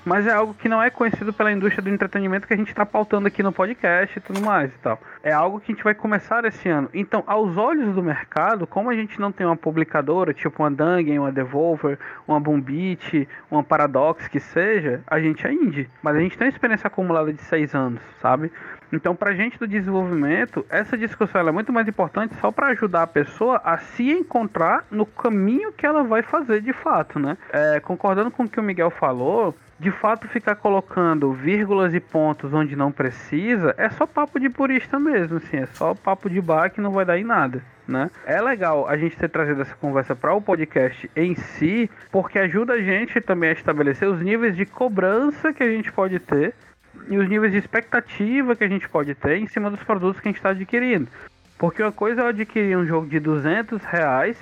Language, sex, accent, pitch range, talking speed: Portuguese, male, Brazilian, 155-220 Hz, 215 wpm